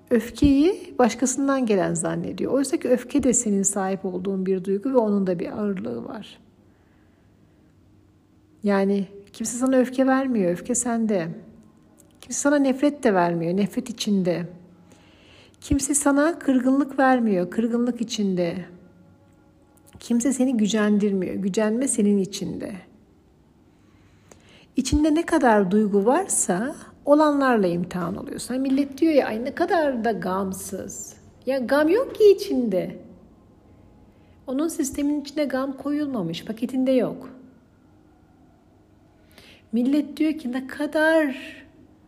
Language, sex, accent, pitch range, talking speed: Turkish, female, native, 180-270 Hz, 110 wpm